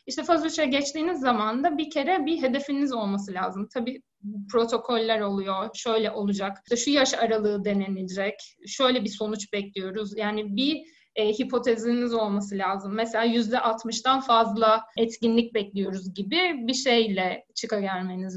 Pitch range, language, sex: 210-275 Hz, Turkish, female